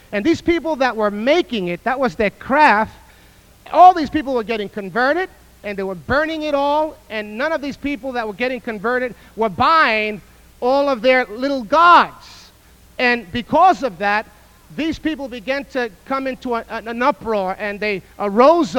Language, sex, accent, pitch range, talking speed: English, male, American, 220-295 Hz, 170 wpm